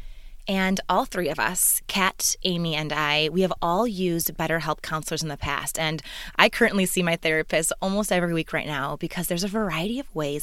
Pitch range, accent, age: 160-195 Hz, American, 20-39